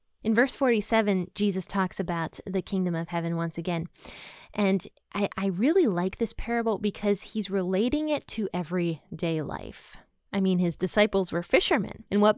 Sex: female